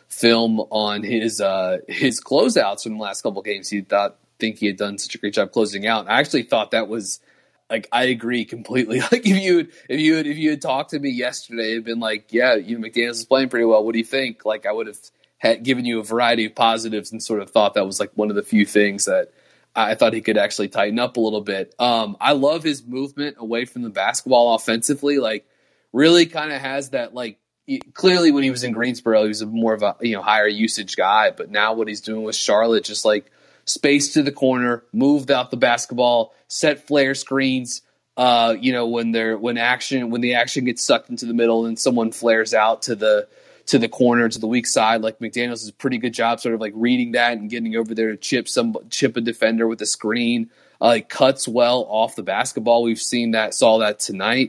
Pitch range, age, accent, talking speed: 110-130 Hz, 30-49, American, 240 wpm